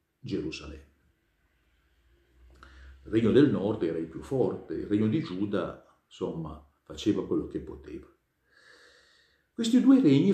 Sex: male